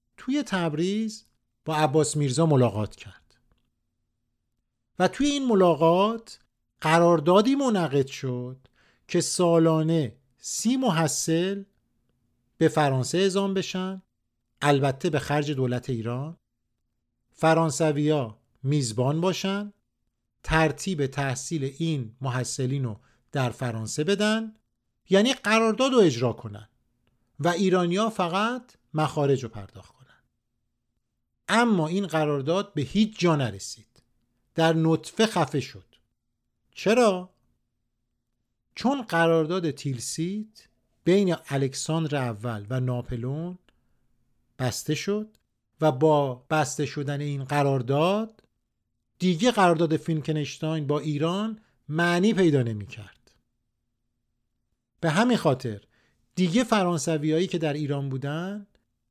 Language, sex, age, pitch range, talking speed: Persian, male, 50-69, 120-180 Hz, 95 wpm